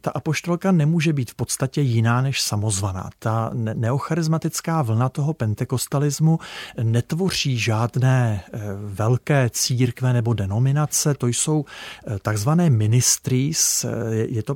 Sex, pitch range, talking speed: male, 115-145 Hz, 105 wpm